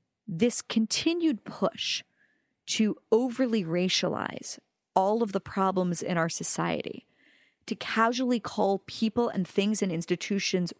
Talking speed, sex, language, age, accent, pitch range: 115 wpm, female, English, 40-59, American, 175-225 Hz